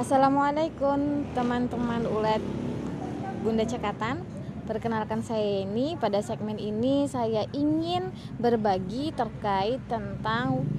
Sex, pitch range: female, 220-270 Hz